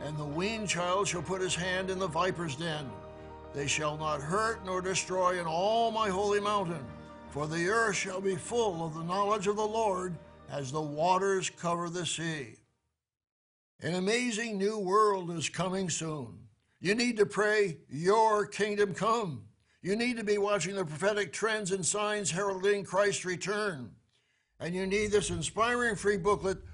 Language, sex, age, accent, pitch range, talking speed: English, male, 60-79, American, 165-205 Hz, 170 wpm